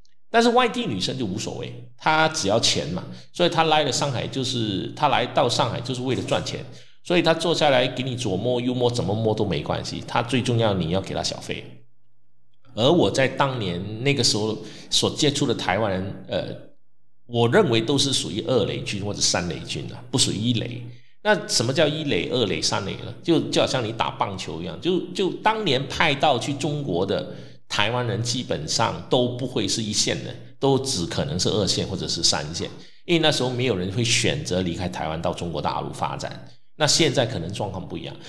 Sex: male